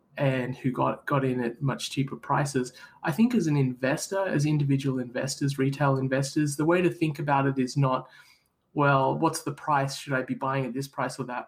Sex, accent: male, Australian